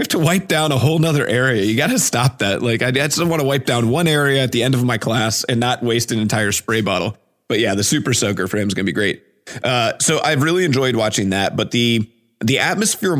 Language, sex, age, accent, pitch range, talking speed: English, male, 30-49, American, 95-120 Hz, 265 wpm